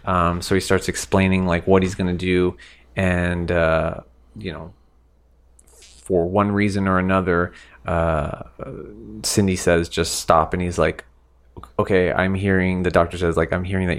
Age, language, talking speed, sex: 30-49, English, 165 wpm, male